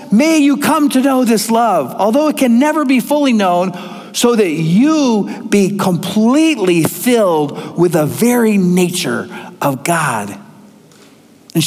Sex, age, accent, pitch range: male, 50-69, American, 190-275 Hz